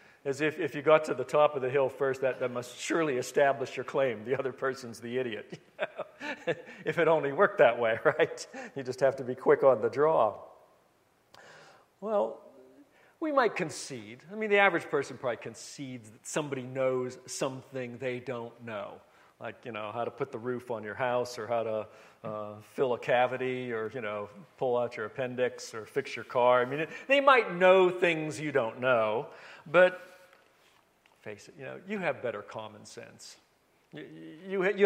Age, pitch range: 50-69, 125-180 Hz